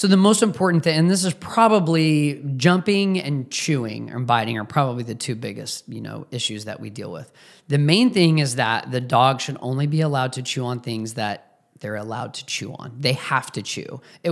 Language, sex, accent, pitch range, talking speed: English, male, American, 130-175 Hz, 220 wpm